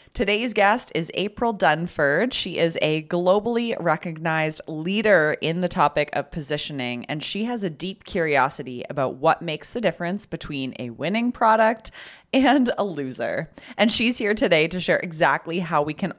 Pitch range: 145-195 Hz